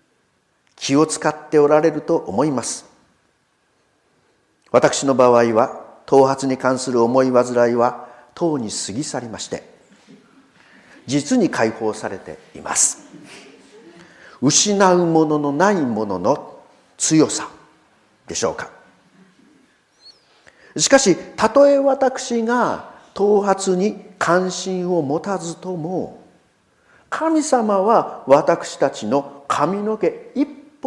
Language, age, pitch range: Japanese, 50-69, 125-200 Hz